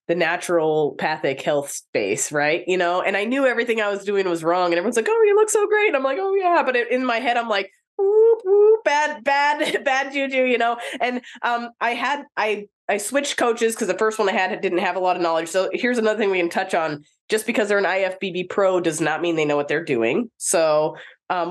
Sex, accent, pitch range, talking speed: female, American, 175-225 Hz, 245 wpm